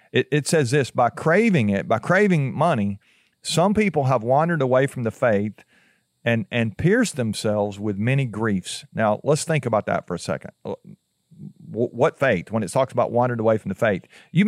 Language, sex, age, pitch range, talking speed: English, male, 50-69, 115-145 Hz, 180 wpm